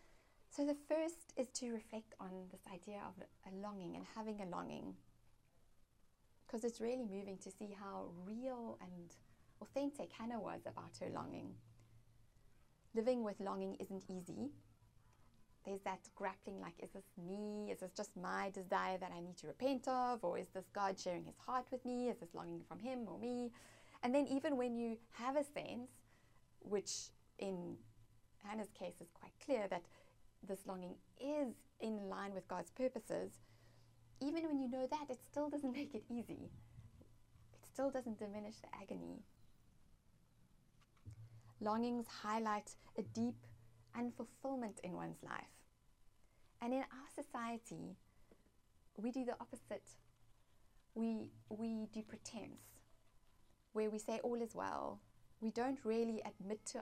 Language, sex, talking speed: English, female, 150 wpm